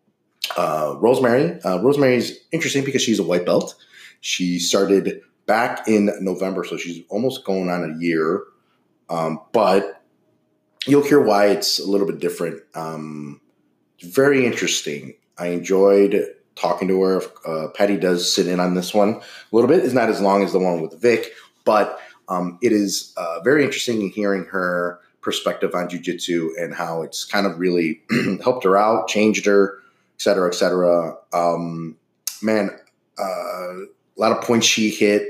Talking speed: 165 wpm